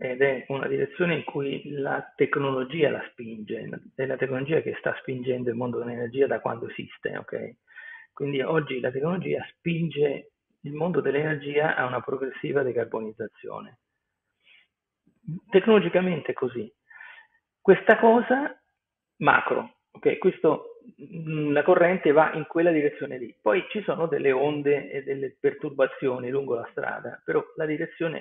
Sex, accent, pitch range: male, native, 145-225 Hz